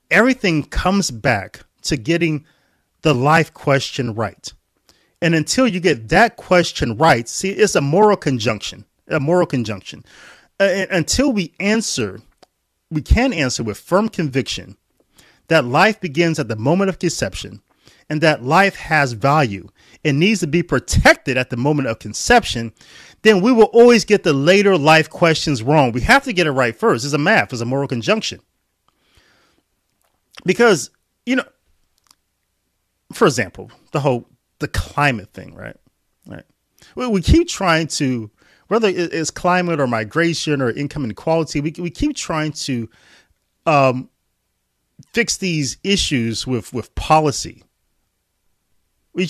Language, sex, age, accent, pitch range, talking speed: English, male, 30-49, American, 125-180 Hz, 145 wpm